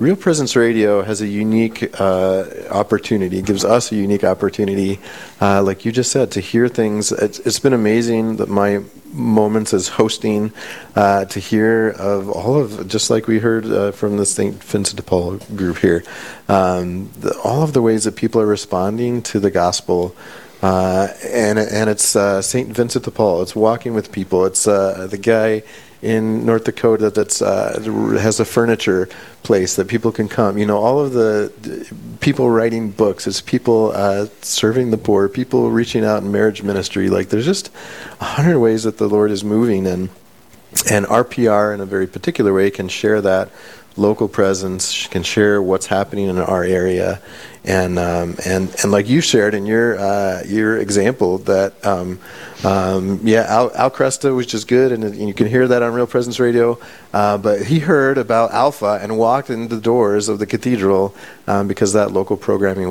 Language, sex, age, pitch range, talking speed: English, male, 40-59, 95-115 Hz, 185 wpm